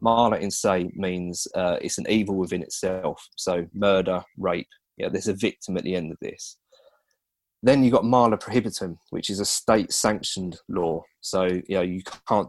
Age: 20-39